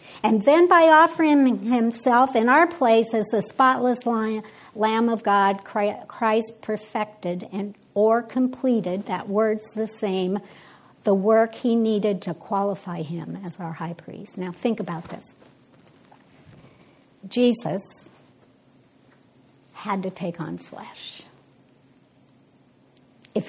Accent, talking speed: American, 115 wpm